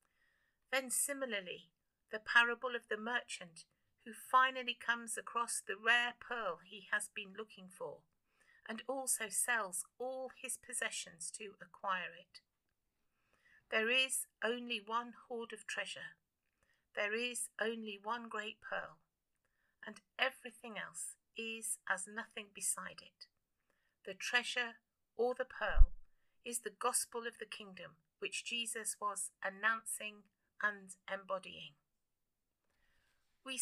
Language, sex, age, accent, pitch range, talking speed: English, female, 50-69, British, 205-245 Hz, 120 wpm